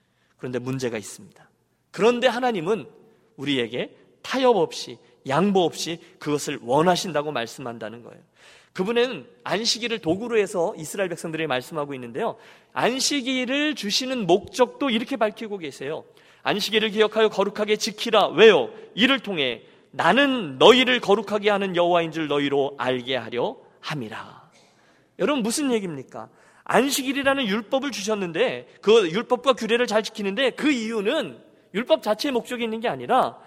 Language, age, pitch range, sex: Korean, 40-59, 150-235 Hz, male